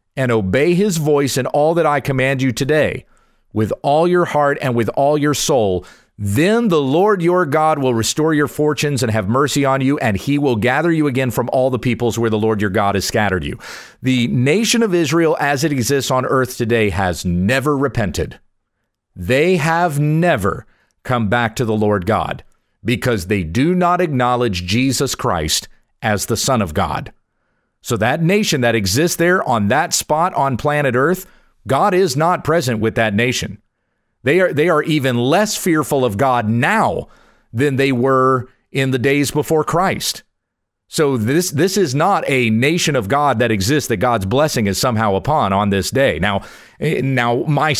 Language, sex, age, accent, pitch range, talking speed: English, male, 40-59, American, 115-150 Hz, 185 wpm